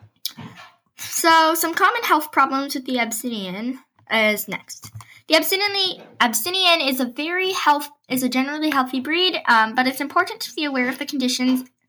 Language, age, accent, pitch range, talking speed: English, 10-29, American, 230-300 Hz, 155 wpm